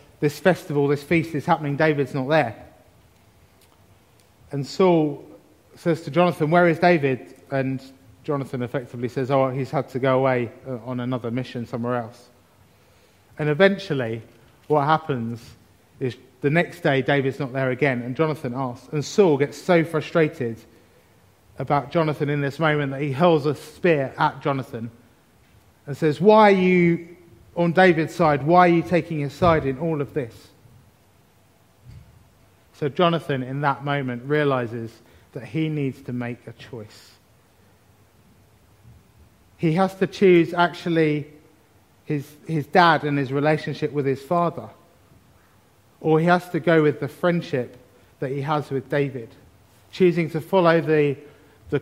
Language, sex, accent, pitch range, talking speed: English, male, British, 115-155 Hz, 145 wpm